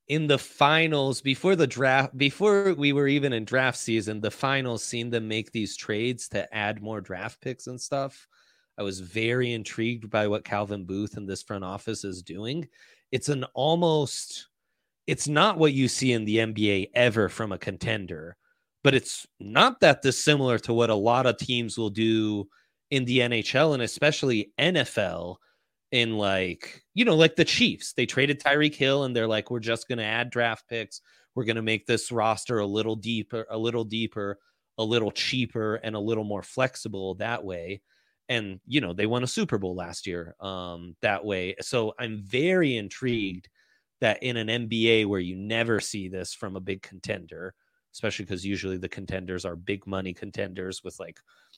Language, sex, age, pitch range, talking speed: English, male, 30-49, 100-130 Hz, 185 wpm